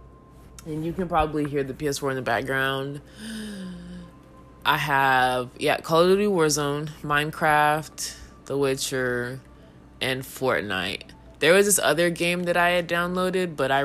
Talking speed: 145 wpm